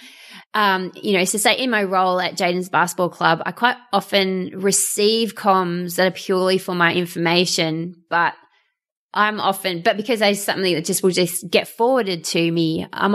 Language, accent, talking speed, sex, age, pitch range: English, Australian, 180 wpm, female, 20-39, 165-195 Hz